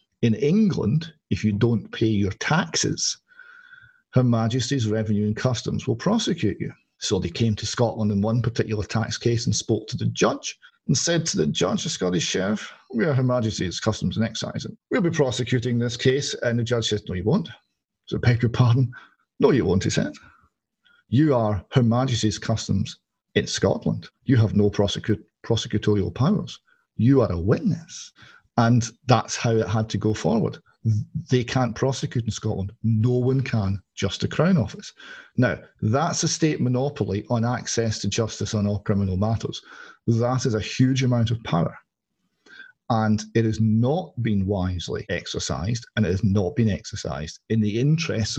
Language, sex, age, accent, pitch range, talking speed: English, male, 40-59, British, 105-130 Hz, 175 wpm